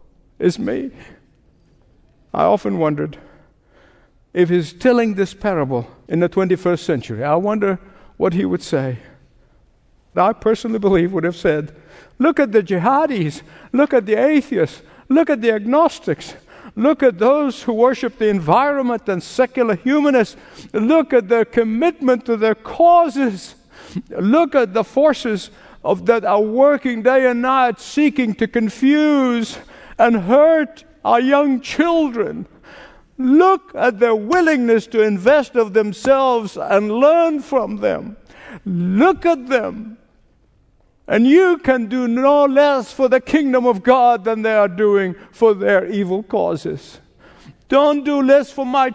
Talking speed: 140 wpm